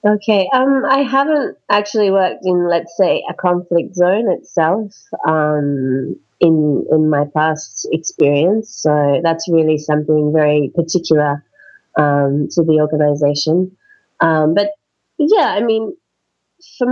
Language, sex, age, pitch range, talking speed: English, female, 30-49, 155-200 Hz, 125 wpm